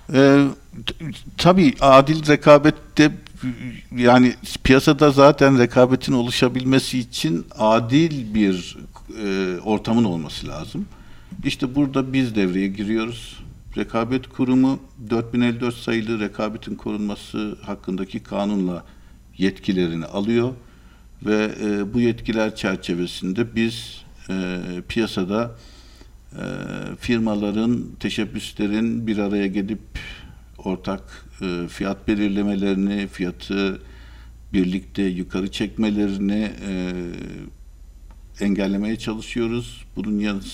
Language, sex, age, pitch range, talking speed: Turkish, male, 60-79, 95-120 Hz, 80 wpm